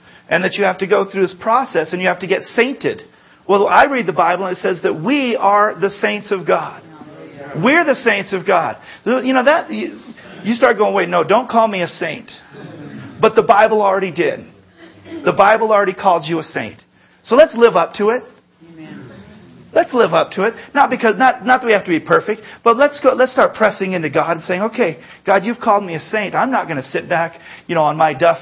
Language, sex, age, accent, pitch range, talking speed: English, male, 40-59, American, 150-200 Hz, 230 wpm